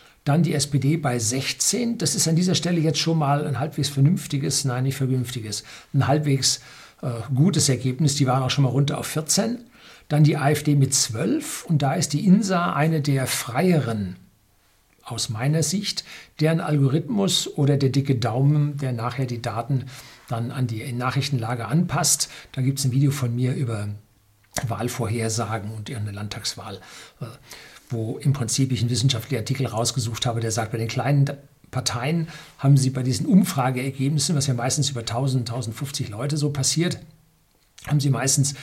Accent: German